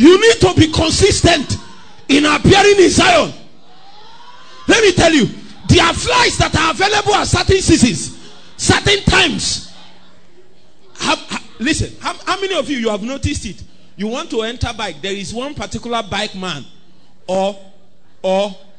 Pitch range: 195-300 Hz